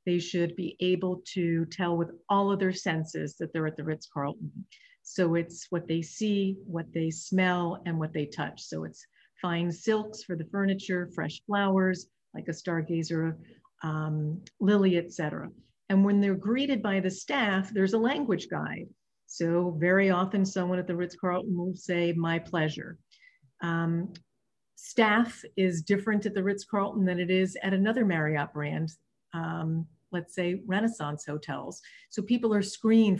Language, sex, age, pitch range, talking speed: English, female, 50-69, 165-200 Hz, 160 wpm